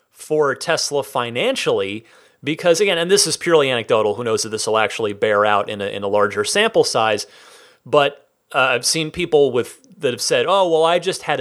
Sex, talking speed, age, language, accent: male, 205 wpm, 30-49, English, American